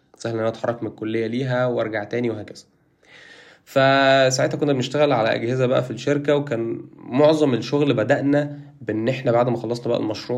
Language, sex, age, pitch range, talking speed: Arabic, male, 20-39, 120-150 Hz, 160 wpm